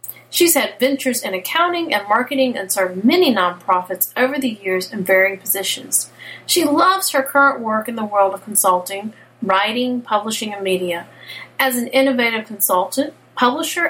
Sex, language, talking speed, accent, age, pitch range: female, English, 155 wpm, American, 40-59, 200-270 Hz